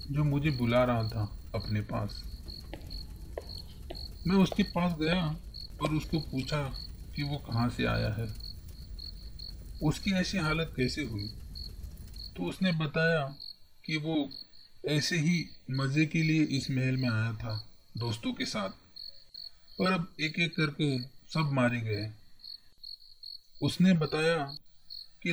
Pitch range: 110-155 Hz